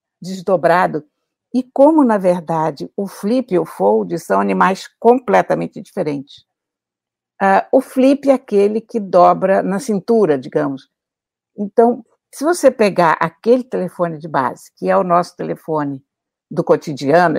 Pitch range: 170-235 Hz